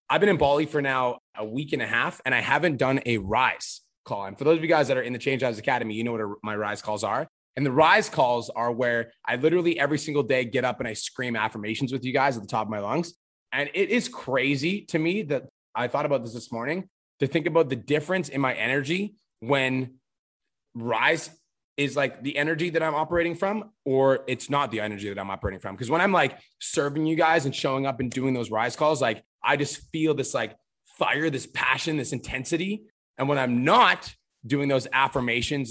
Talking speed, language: 230 wpm, English